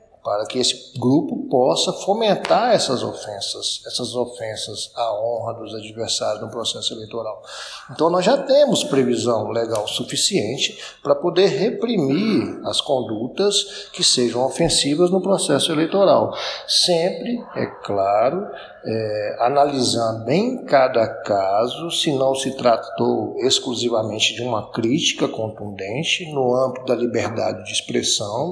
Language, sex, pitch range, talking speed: Portuguese, male, 115-170 Hz, 120 wpm